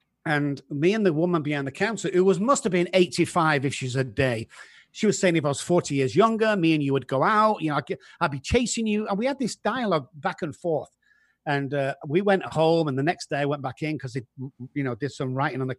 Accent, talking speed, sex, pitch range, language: British, 265 wpm, male, 140-190 Hz, English